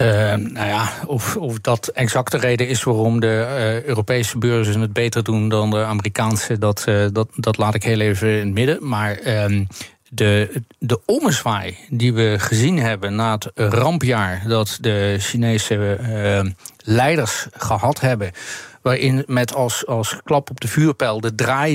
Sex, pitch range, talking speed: male, 110-140 Hz, 160 wpm